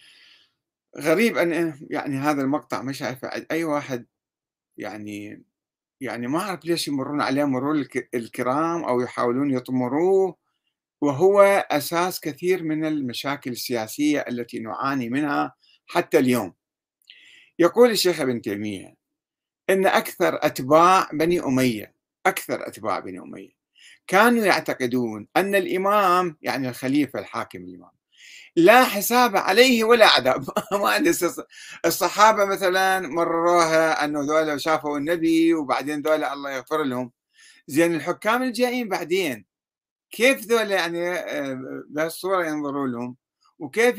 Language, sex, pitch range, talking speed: Arabic, male, 130-190 Hz, 115 wpm